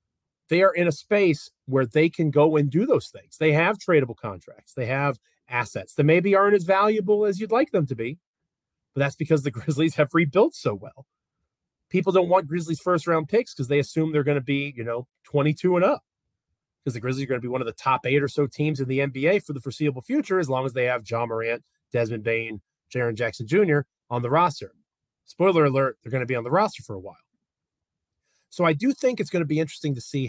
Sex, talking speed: male, 235 wpm